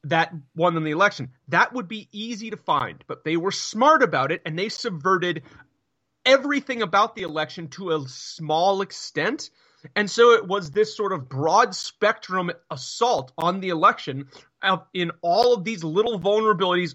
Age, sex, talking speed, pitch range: 30-49, male, 165 wpm, 160-225 Hz